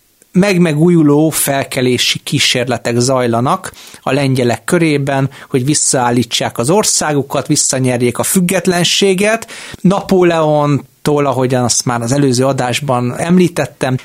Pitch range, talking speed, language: 125-160 Hz, 95 wpm, Hungarian